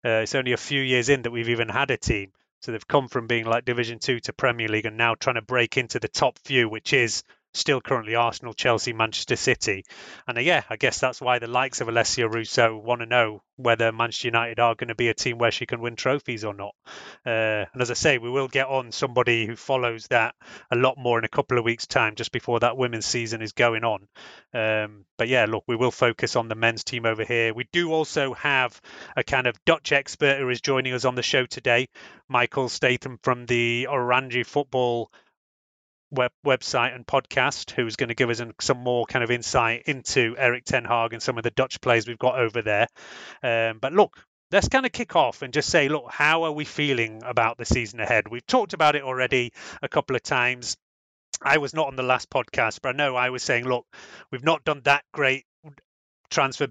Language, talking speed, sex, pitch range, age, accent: English, 225 wpm, male, 115-130 Hz, 30-49, British